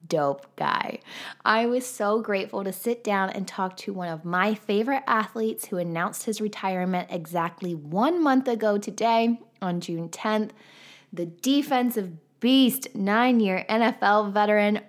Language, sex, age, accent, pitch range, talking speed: English, female, 20-39, American, 190-245 Hz, 145 wpm